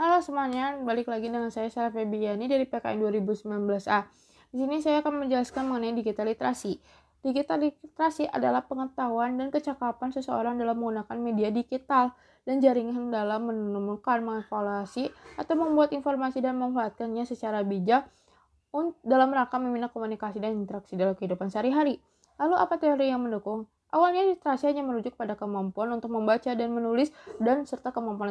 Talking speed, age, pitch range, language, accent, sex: 145 wpm, 20-39, 220-285 Hz, Indonesian, native, female